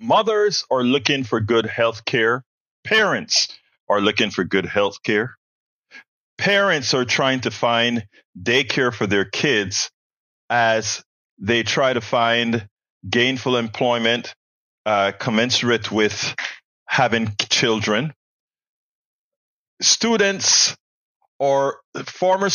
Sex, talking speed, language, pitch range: male, 100 wpm, English, 110-160 Hz